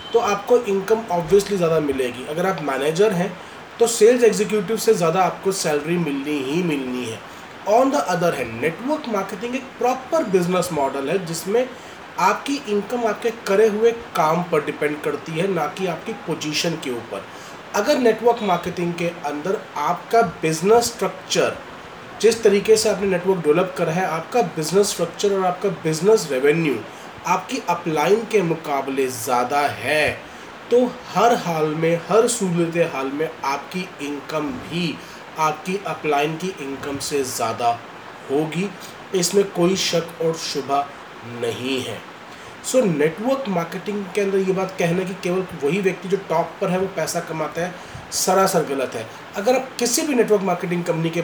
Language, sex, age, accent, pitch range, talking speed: Hindi, male, 30-49, native, 155-205 Hz, 155 wpm